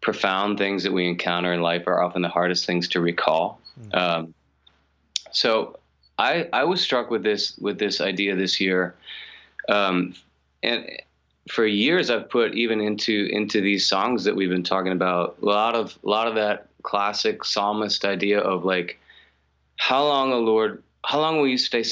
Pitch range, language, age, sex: 85-105 Hz, English, 30-49, male